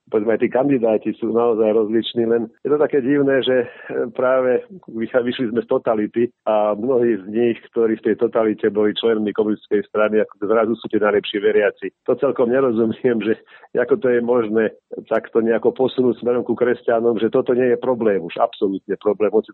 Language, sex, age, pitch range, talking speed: Slovak, male, 50-69, 105-125 Hz, 185 wpm